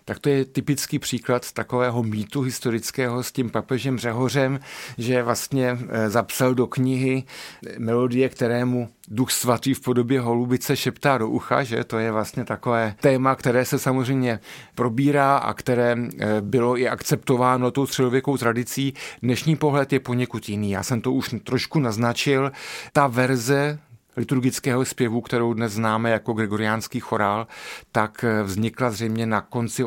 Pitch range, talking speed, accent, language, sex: 115-130 Hz, 145 wpm, native, Czech, male